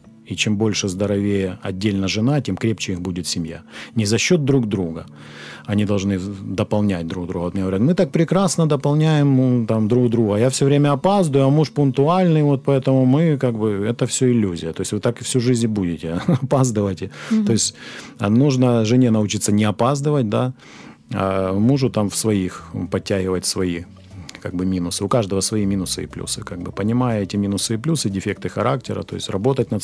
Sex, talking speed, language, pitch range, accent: male, 185 wpm, Ukrainian, 95-125 Hz, native